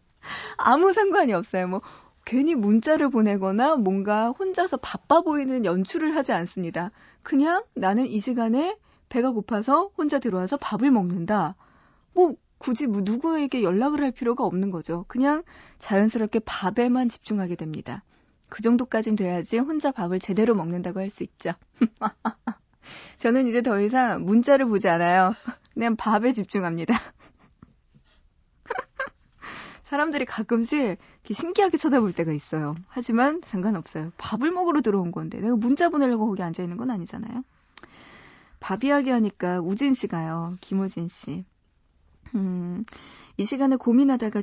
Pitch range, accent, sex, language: 190-260 Hz, native, female, Korean